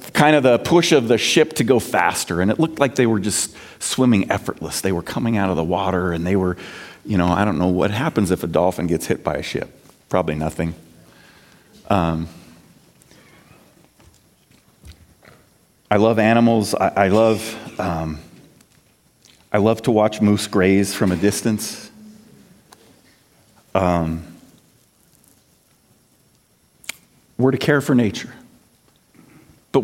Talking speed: 140 wpm